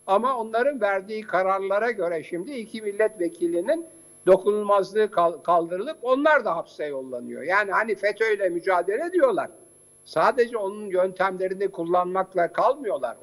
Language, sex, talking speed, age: Turkish, male, 115 wpm, 60-79